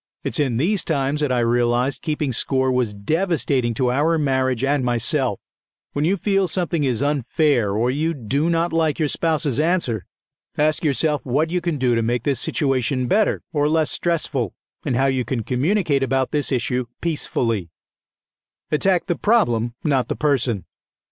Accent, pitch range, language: American, 125-155 Hz, English